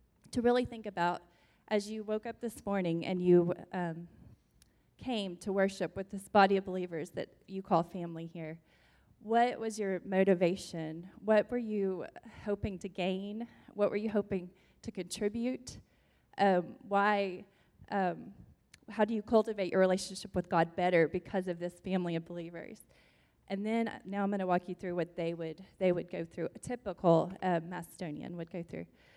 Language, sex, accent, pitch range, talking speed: English, female, American, 175-215 Hz, 170 wpm